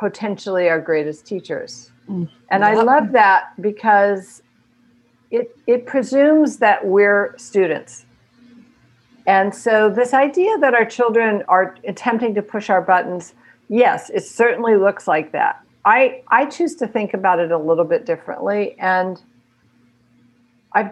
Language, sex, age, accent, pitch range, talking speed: English, female, 50-69, American, 165-220 Hz, 135 wpm